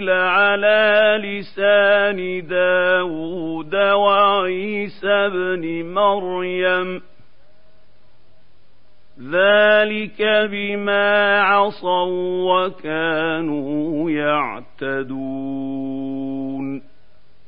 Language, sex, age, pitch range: Arabic, male, 50-69, 180-205 Hz